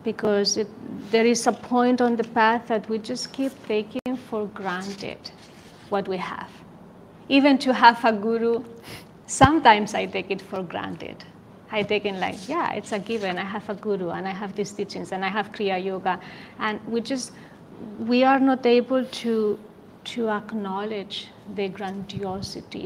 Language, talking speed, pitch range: English, 165 wpm, 195-230 Hz